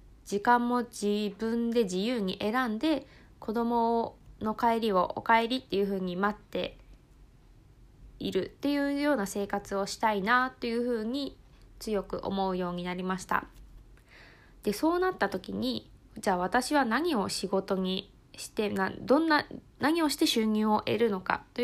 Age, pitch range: 20-39, 200-245 Hz